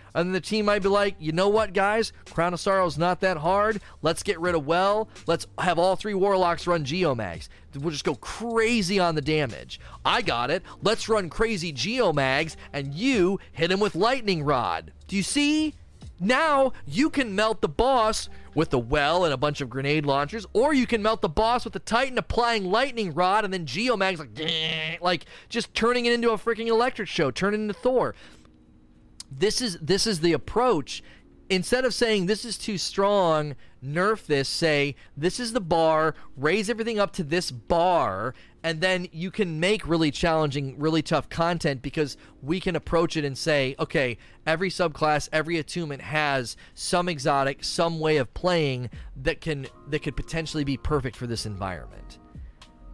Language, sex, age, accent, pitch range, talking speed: English, male, 30-49, American, 145-205 Hz, 185 wpm